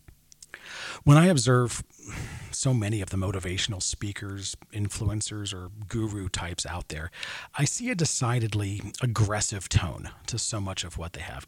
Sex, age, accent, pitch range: male, 40-59, American, 105-145 Hz